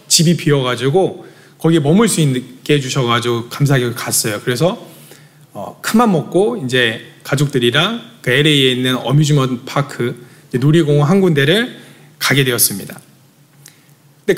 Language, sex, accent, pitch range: Korean, male, native, 145-195 Hz